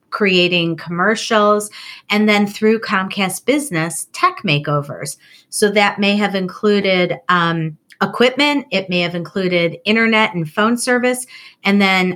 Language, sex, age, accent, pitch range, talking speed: English, female, 30-49, American, 175-210 Hz, 130 wpm